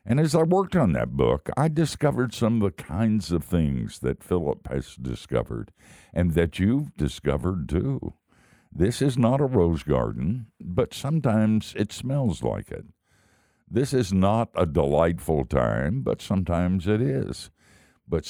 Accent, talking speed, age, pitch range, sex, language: American, 155 wpm, 60-79, 80-110 Hz, male, English